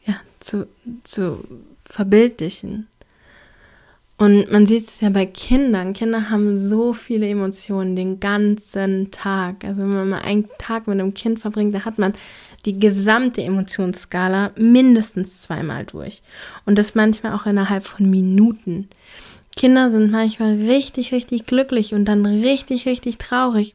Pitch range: 195-225 Hz